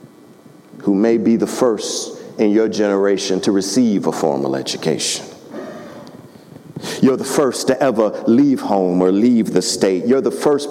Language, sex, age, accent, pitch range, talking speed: English, male, 50-69, American, 100-165 Hz, 150 wpm